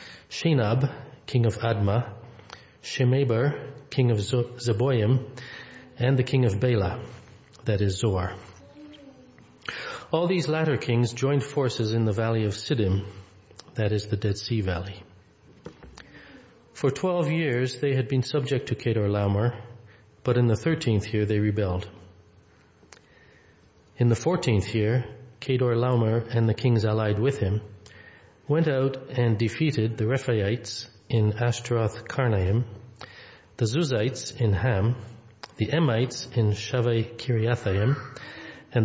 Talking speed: 120 wpm